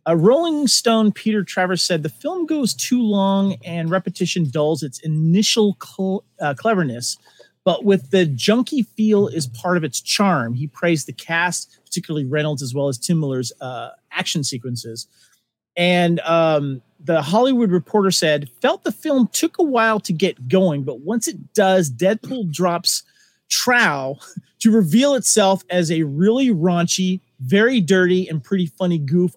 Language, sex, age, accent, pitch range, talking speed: English, male, 40-59, American, 160-220 Hz, 160 wpm